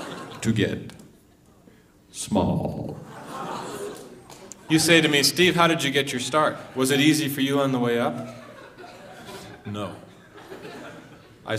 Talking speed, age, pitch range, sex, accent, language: 125 wpm, 30-49, 100-110 Hz, male, American, English